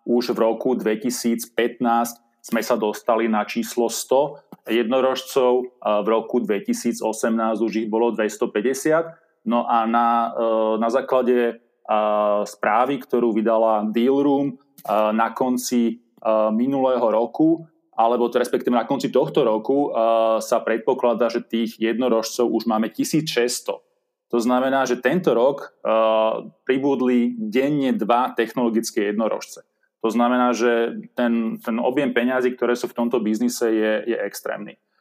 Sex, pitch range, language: male, 115-135 Hz, Slovak